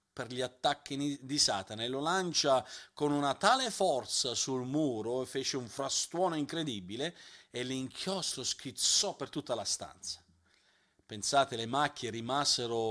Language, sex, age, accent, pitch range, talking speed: Italian, male, 40-59, native, 120-150 Hz, 140 wpm